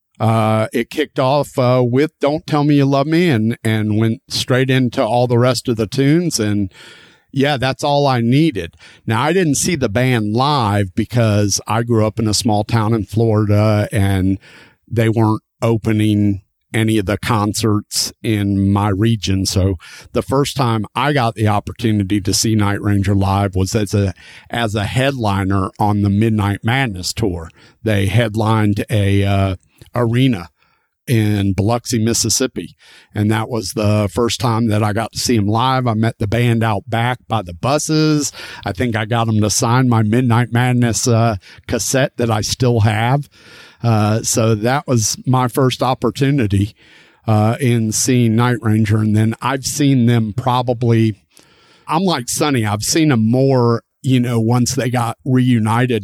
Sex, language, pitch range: male, English, 105-125 Hz